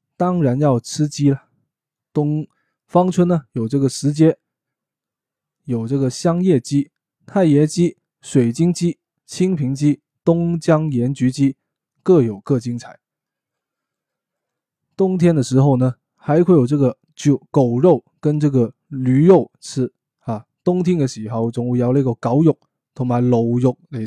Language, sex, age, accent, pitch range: Chinese, male, 20-39, native, 125-155 Hz